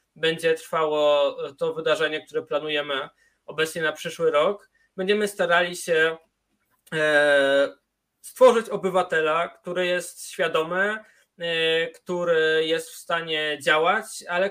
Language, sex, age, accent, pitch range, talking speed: Polish, male, 20-39, native, 150-190 Hz, 100 wpm